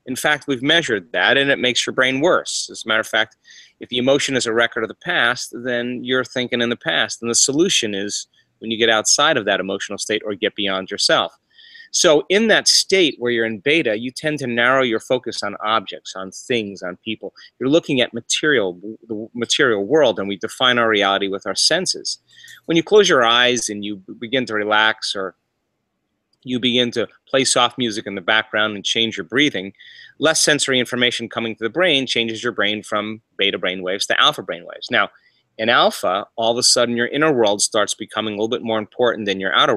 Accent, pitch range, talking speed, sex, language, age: American, 105-130 Hz, 215 wpm, male, English, 30-49